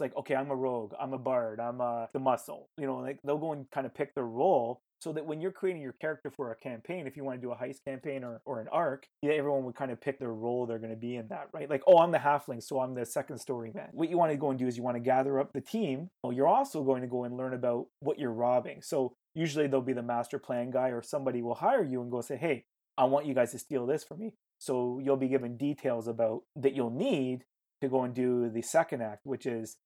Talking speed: 285 wpm